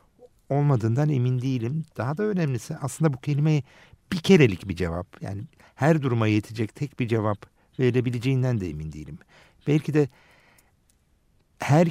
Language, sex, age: Turkish, male, 60-79